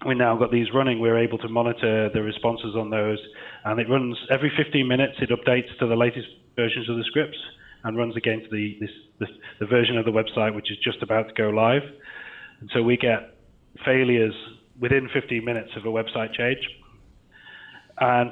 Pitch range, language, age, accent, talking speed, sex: 110-125 Hz, English, 30-49, British, 195 wpm, male